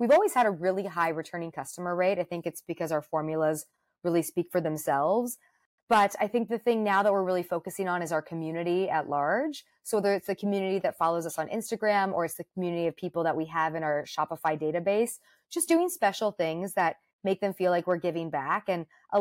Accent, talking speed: American, 225 wpm